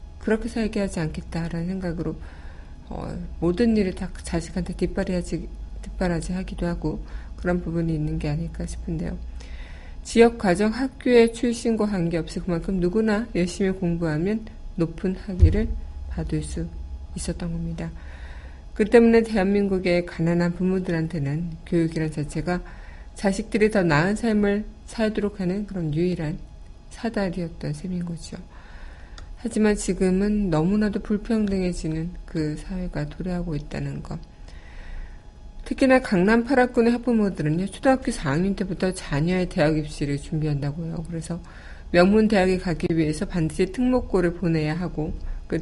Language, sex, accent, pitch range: Korean, female, native, 155-205 Hz